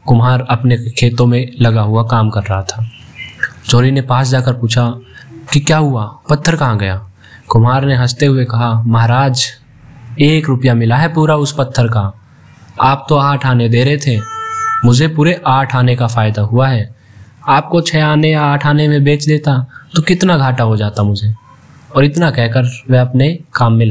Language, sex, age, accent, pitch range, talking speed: Hindi, male, 20-39, native, 115-135 Hz, 185 wpm